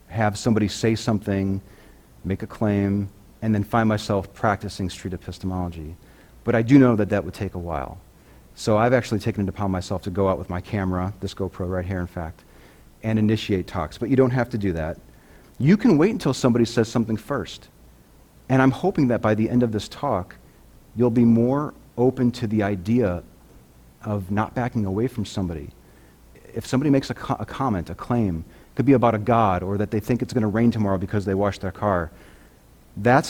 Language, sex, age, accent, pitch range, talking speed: English, male, 40-59, American, 90-120 Hz, 200 wpm